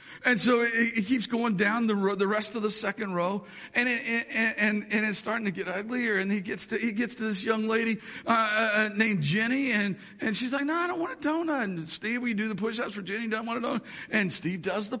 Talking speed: 260 wpm